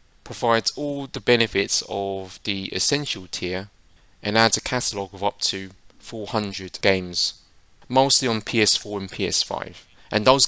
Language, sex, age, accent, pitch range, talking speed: English, male, 20-39, British, 95-115 Hz, 135 wpm